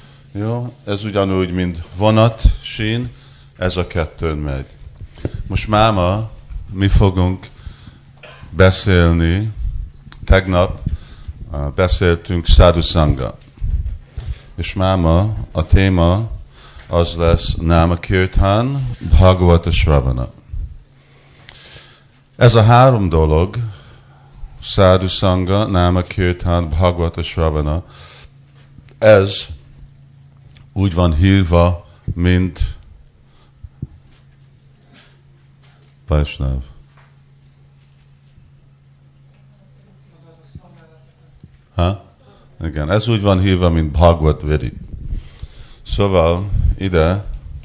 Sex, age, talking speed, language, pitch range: male, 50-69, 65 wpm, Hungarian, 85-120 Hz